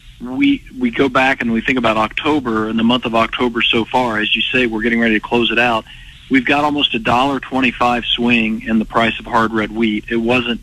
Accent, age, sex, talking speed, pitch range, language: American, 40-59, male, 245 wpm, 110-125 Hz, English